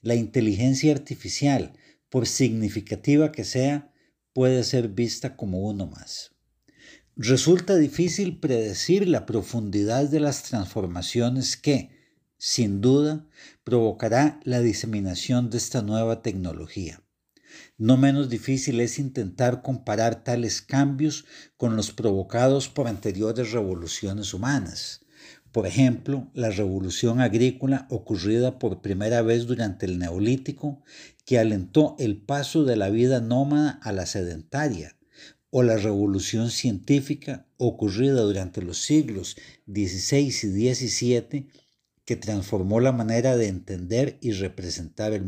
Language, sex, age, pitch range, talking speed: Spanish, male, 50-69, 105-135 Hz, 120 wpm